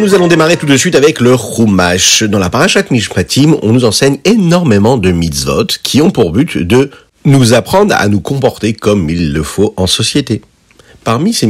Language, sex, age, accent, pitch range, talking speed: French, male, 50-69, French, 90-130 Hz, 195 wpm